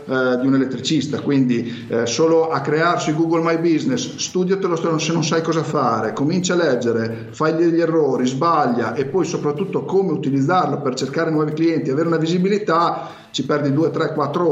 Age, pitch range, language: 50-69, 145-180 Hz, Italian